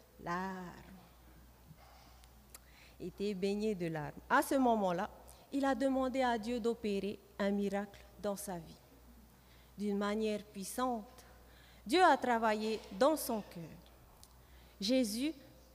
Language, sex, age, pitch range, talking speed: French, female, 30-49, 170-255 Hz, 115 wpm